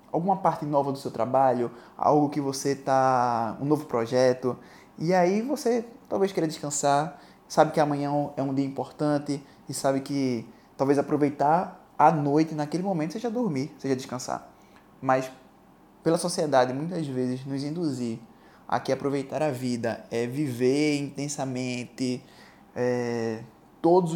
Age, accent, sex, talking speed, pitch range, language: 20-39, Brazilian, male, 140 wpm, 125-160 Hz, Portuguese